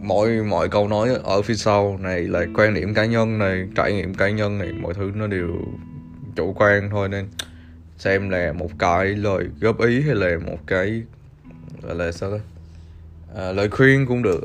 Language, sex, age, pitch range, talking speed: Vietnamese, male, 20-39, 90-110 Hz, 195 wpm